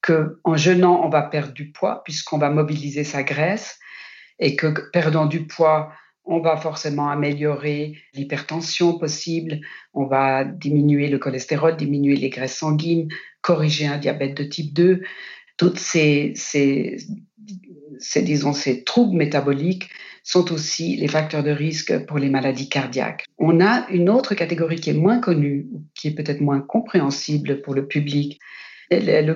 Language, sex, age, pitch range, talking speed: French, female, 50-69, 145-170 Hz, 150 wpm